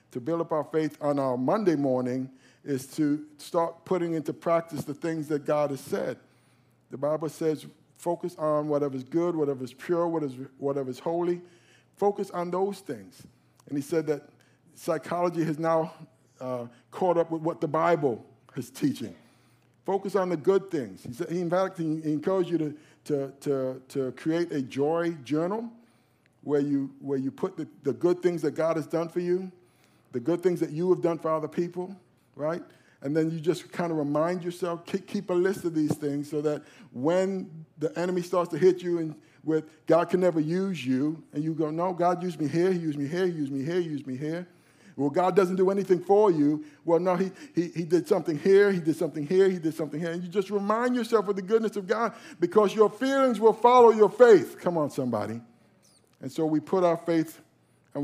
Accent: American